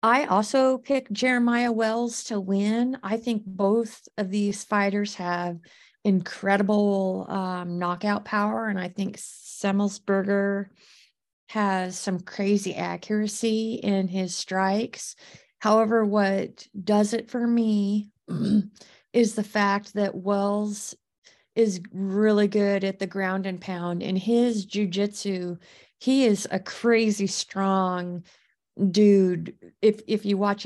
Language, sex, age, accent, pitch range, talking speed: English, female, 30-49, American, 185-215 Hz, 120 wpm